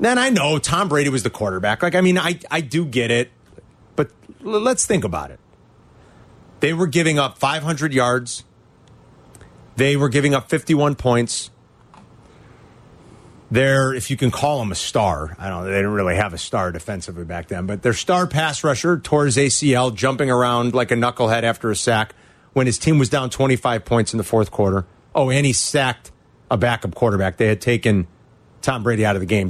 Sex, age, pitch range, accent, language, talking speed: male, 30-49, 105-160 Hz, American, English, 195 wpm